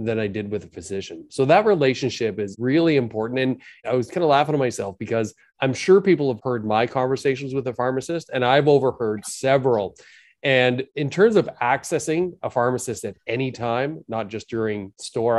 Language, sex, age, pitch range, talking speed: English, male, 30-49, 110-135 Hz, 190 wpm